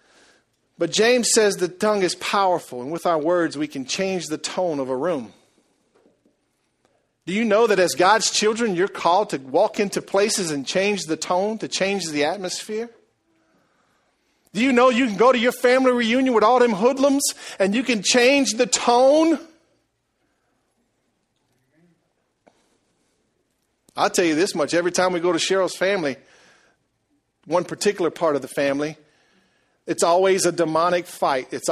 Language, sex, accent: English, male, American